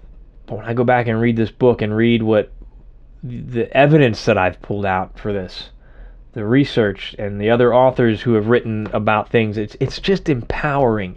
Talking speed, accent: 185 wpm, American